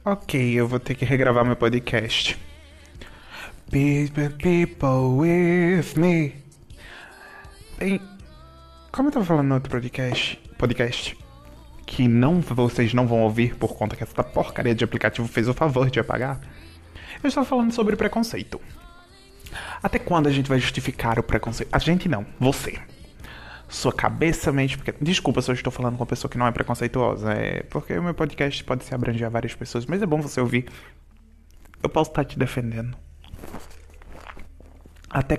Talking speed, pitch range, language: 160 wpm, 105-140 Hz, Portuguese